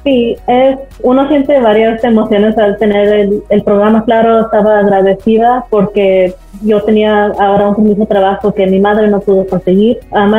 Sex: female